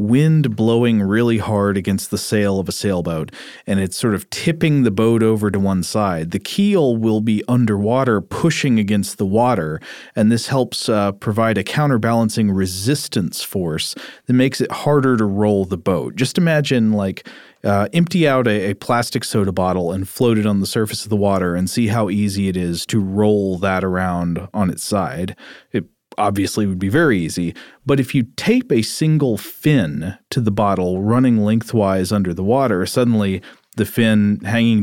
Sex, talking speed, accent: male, 185 wpm, American